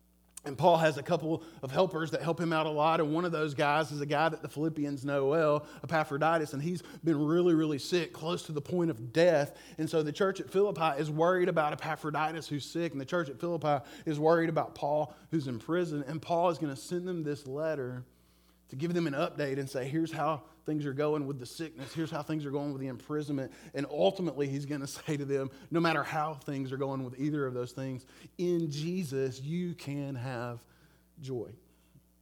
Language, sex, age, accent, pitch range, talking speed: English, male, 30-49, American, 125-160 Hz, 225 wpm